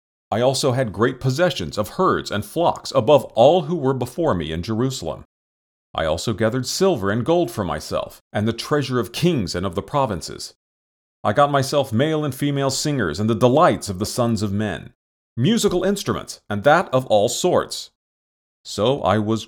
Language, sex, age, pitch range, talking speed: English, male, 40-59, 80-135 Hz, 180 wpm